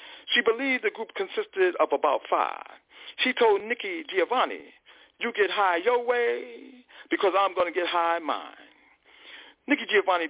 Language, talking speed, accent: English, 150 wpm, American